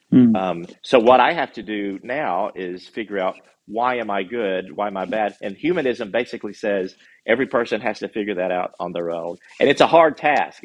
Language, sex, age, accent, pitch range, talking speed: English, male, 40-59, American, 95-125 Hz, 215 wpm